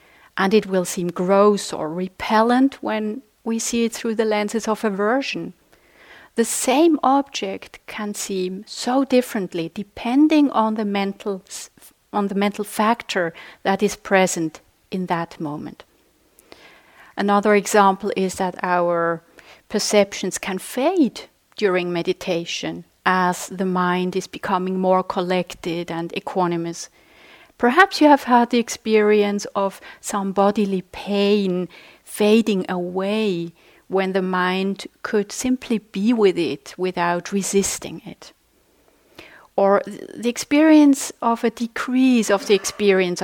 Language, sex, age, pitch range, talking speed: English, female, 40-59, 185-230 Hz, 125 wpm